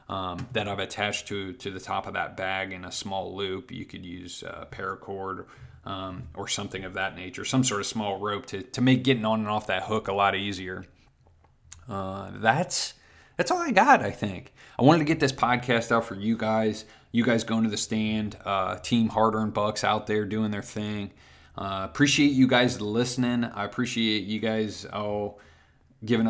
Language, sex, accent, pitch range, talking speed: English, male, American, 100-115 Hz, 200 wpm